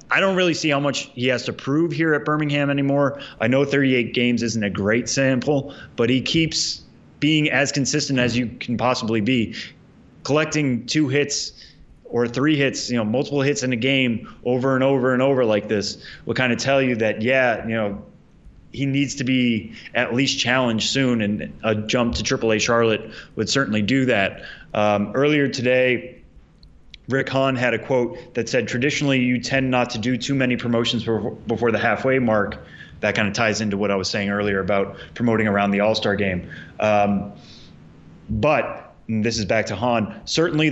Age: 20-39